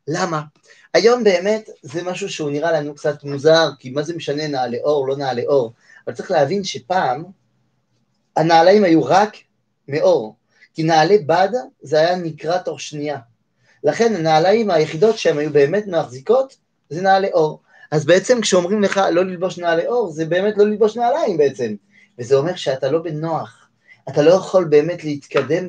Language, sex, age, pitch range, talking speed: French, male, 30-49, 140-195 Hz, 155 wpm